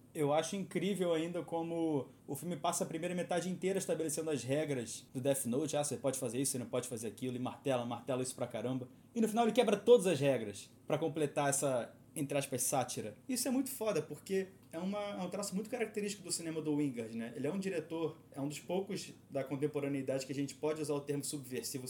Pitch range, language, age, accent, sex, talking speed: 130-180 Hz, Portuguese, 20-39, Brazilian, male, 220 wpm